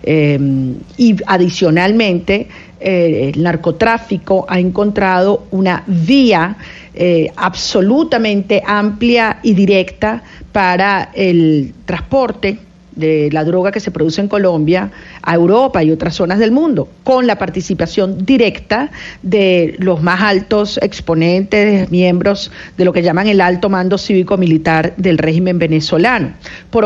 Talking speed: 125 wpm